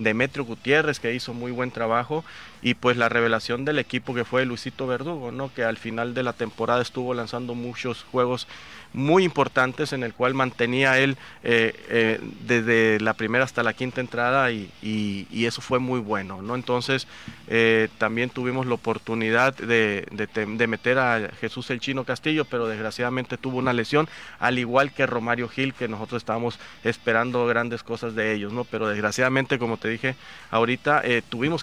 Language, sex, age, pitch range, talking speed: Spanish, male, 30-49, 115-130 Hz, 175 wpm